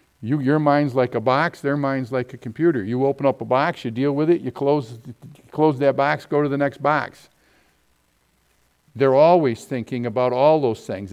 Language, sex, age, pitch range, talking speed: English, male, 50-69, 115-150 Hz, 195 wpm